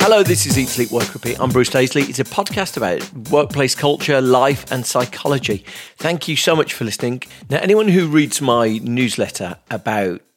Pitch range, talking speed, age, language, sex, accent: 110-130 Hz, 185 wpm, 40-59, English, male, British